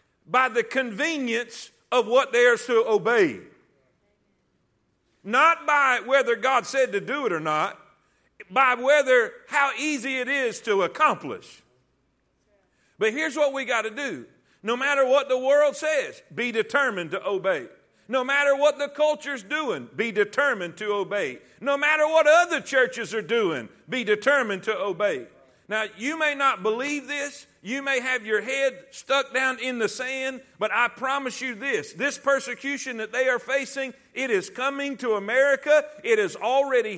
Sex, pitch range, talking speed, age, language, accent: male, 240-290 Hz, 160 wpm, 50-69, English, American